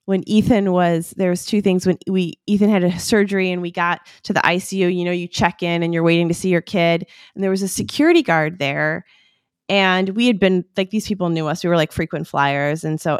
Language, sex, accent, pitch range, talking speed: English, female, American, 170-210 Hz, 245 wpm